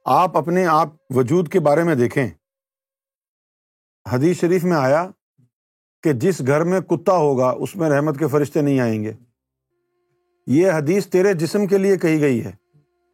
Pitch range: 135-190 Hz